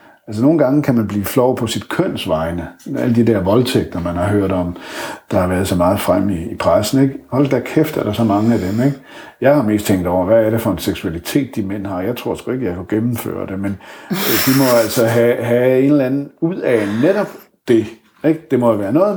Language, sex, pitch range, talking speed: Danish, male, 105-145 Hz, 245 wpm